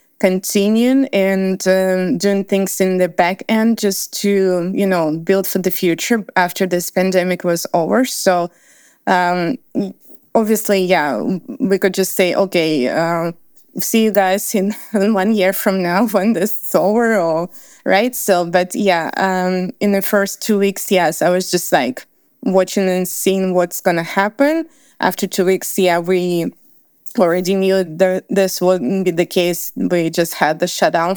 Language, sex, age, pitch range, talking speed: English, female, 20-39, 180-205 Hz, 160 wpm